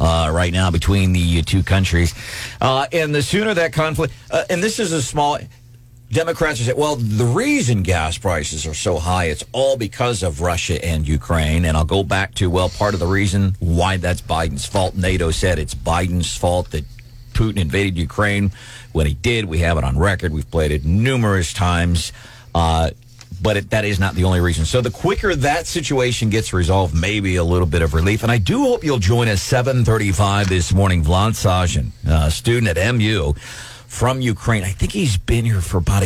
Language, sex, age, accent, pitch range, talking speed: English, male, 50-69, American, 85-115 Hz, 195 wpm